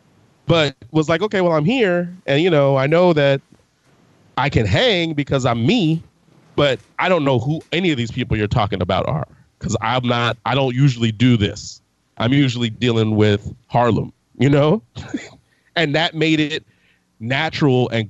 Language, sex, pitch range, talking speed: English, male, 110-140 Hz, 175 wpm